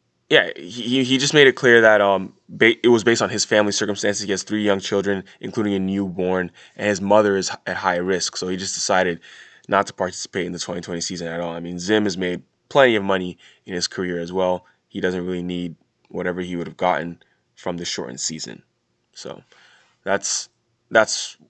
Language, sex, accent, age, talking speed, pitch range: English, male, American, 20-39, 205 wpm, 95-110 Hz